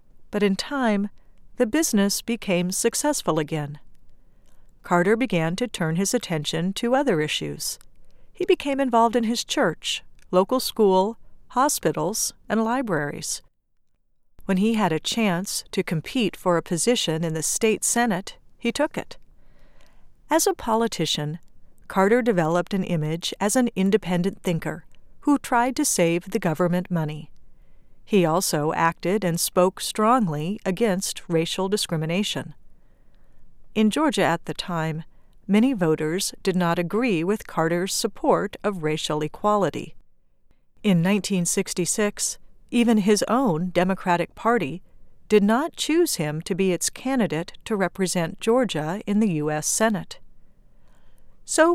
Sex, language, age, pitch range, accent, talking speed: female, English, 50-69, 170-230 Hz, American, 130 wpm